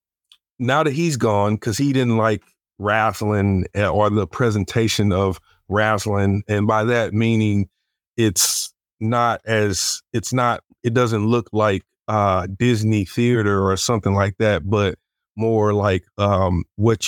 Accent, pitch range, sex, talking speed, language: American, 100-115 Hz, male, 135 wpm, English